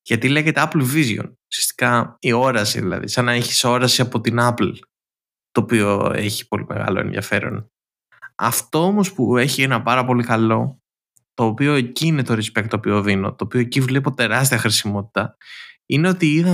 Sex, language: male, Greek